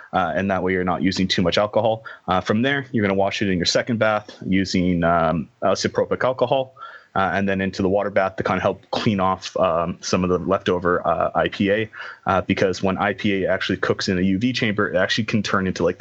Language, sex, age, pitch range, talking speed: English, male, 30-49, 95-120 Hz, 230 wpm